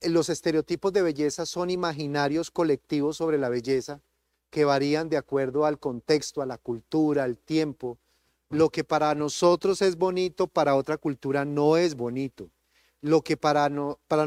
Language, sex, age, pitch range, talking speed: Spanish, male, 40-59, 135-170 Hz, 155 wpm